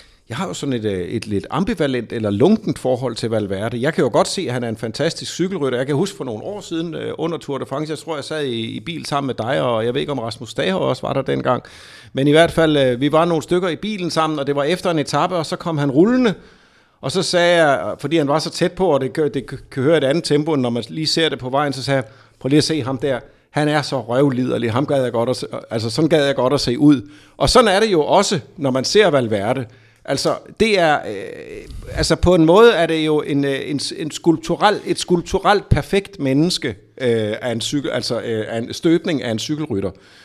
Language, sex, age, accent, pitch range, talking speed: Danish, male, 50-69, native, 130-180 Hz, 255 wpm